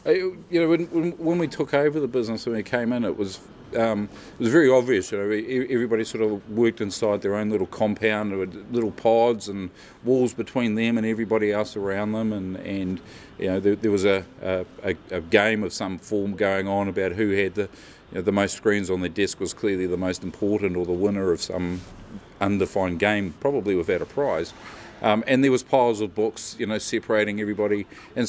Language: English